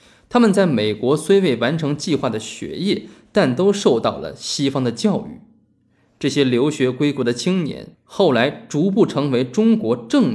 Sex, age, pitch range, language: male, 20-39, 130-210 Hz, Chinese